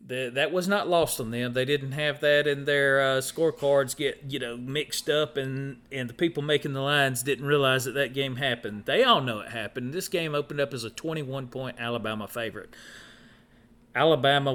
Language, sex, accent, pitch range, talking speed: English, male, American, 120-150 Hz, 195 wpm